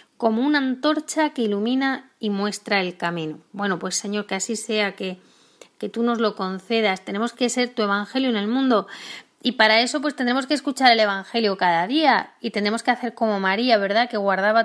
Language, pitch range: Spanish, 200-255 Hz